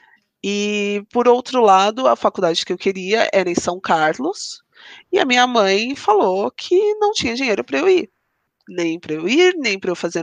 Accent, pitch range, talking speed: Brazilian, 195-295 Hz, 195 wpm